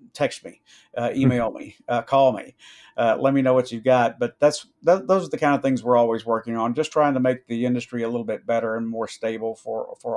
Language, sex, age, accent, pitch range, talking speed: English, male, 50-69, American, 115-135 Hz, 255 wpm